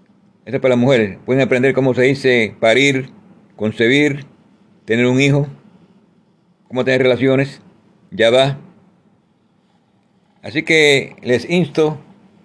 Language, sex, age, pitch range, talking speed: Spanish, male, 50-69, 125-195 Hz, 115 wpm